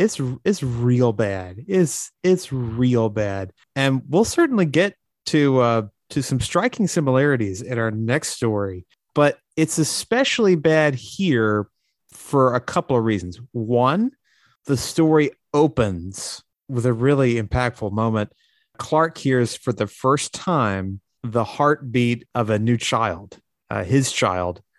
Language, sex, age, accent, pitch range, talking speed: English, male, 30-49, American, 110-135 Hz, 135 wpm